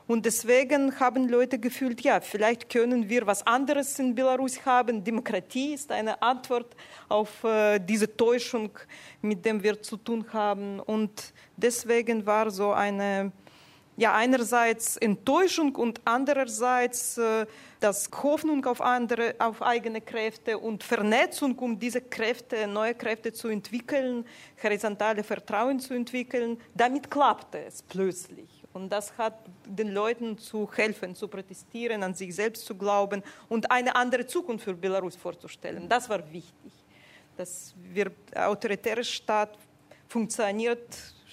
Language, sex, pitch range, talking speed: German, female, 205-245 Hz, 130 wpm